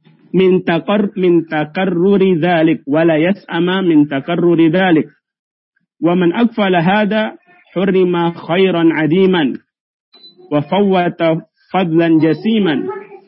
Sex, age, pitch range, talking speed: male, 50-69, 165-195 Hz, 85 wpm